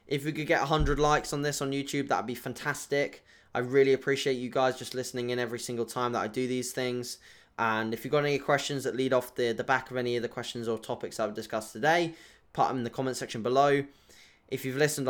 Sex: male